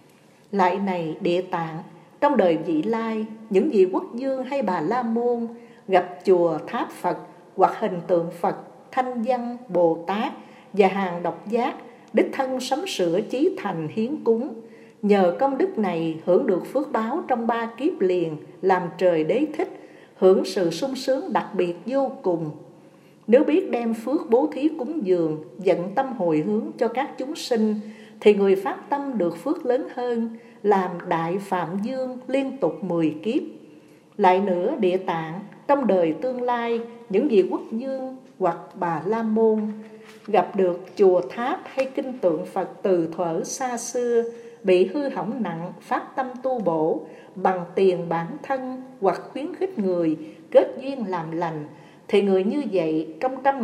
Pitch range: 175-255 Hz